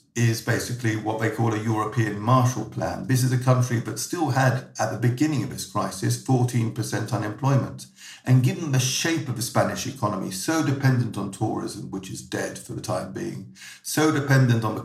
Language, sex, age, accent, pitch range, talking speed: English, male, 50-69, British, 110-130 Hz, 190 wpm